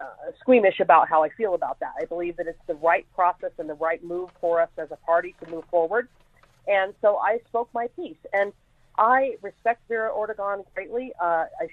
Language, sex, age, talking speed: English, female, 40-59, 205 wpm